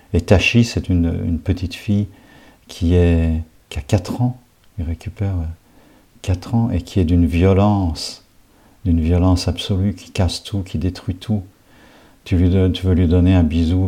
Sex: male